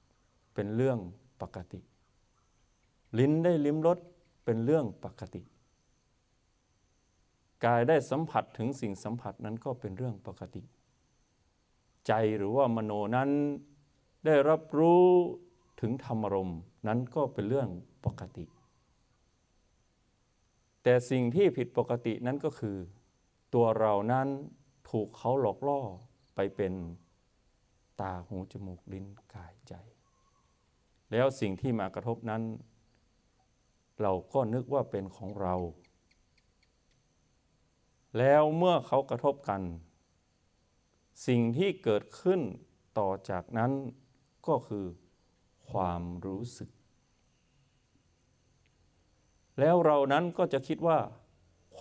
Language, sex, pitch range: Thai, male, 95-135 Hz